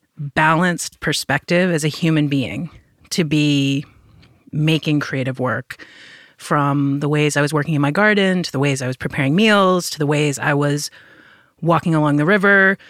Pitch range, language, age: 140-170 Hz, English, 30-49